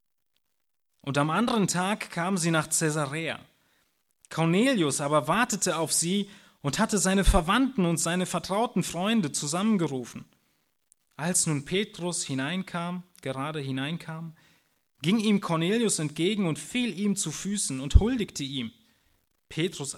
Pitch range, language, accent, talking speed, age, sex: 145-190 Hz, German, German, 125 wpm, 30-49, male